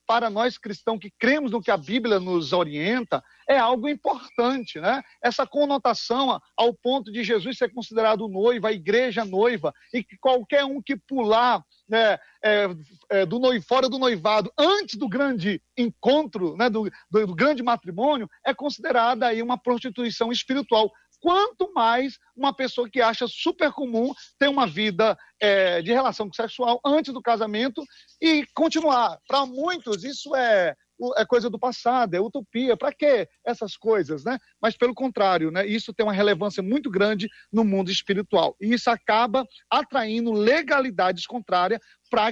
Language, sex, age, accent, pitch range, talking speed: Portuguese, male, 40-59, Brazilian, 215-260 Hz, 155 wpm